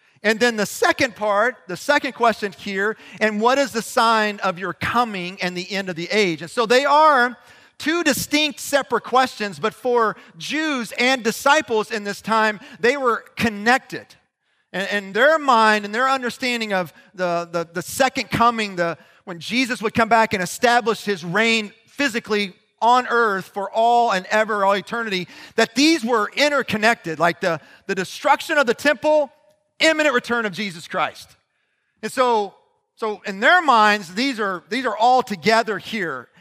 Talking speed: 170 wpm